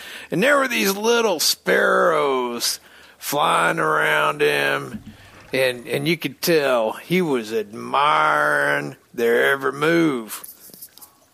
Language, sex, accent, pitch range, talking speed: English, male, American, 130-190 Hz, 105 wpm